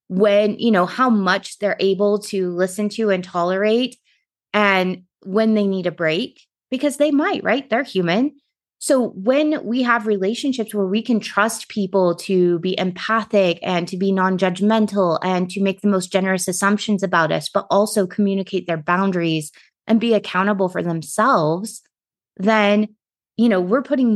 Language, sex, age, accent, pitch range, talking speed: English, female, 20-39, American, 175-210 Hz, 160 wpm